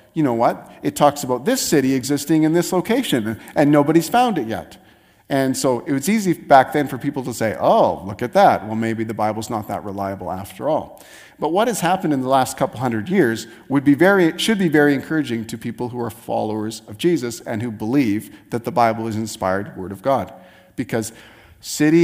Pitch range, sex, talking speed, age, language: 110-145 Hz, male, 210 wpm, 40-59, English